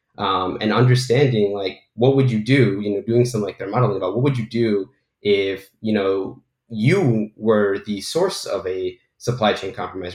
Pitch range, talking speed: 95-120 Hz, 190 wpm